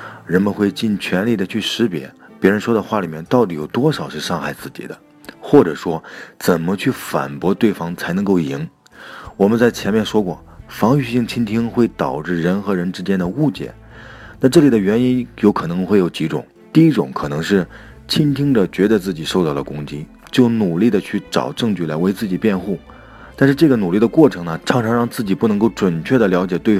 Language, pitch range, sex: Chinese, 85-115 Hz, male